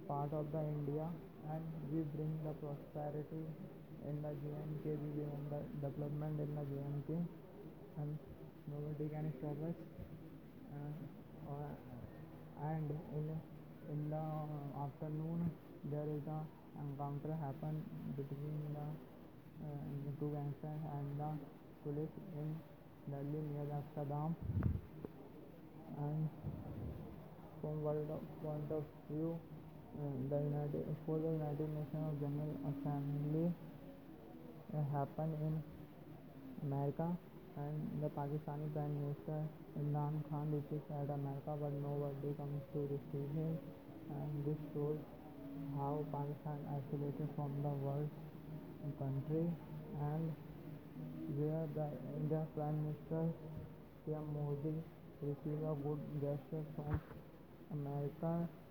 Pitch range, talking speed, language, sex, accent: 145-155 Hz, 110 wpm, English, male, Indian